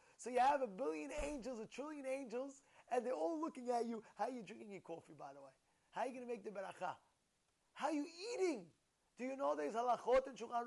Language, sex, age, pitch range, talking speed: English, male, 30-49, 205-260 Hz, 235 wpm